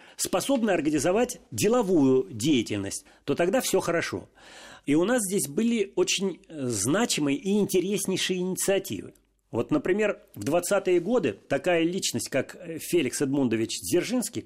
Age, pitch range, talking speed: 40-59, 150-205 Hz, 120 wpm